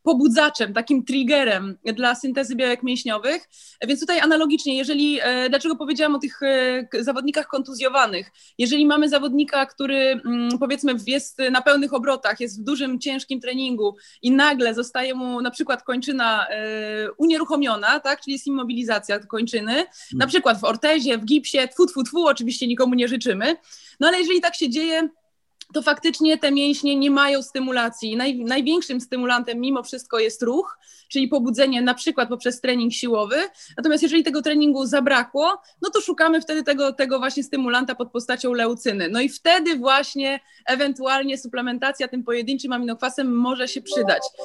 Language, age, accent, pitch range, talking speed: Polish, 20-39, native, 245-295 Hz, 150 wpm